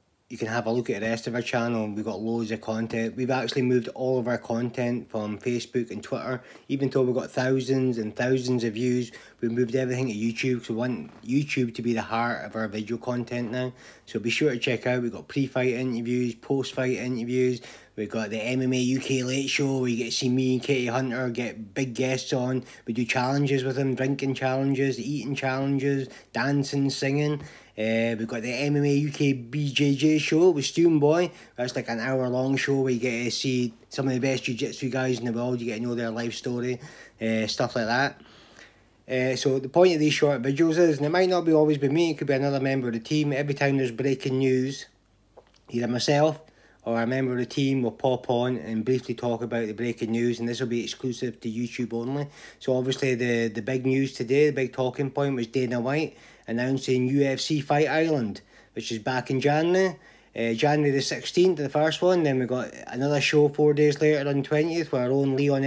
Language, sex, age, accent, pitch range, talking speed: English, male, 20-39, British, 120-140 Hz, 220 wpm